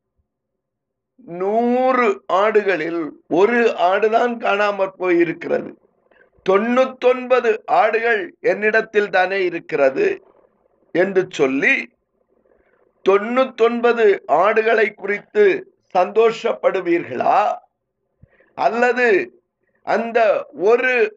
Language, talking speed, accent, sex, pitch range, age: Tamil, 45 wpm, native, male, 200-310 Hz, 50-69